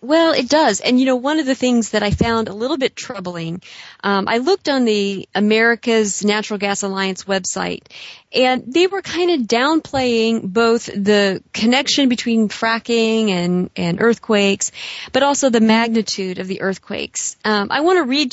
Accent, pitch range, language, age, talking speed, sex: American, 200-250 Hz, English, 40-59, 175 wpm, female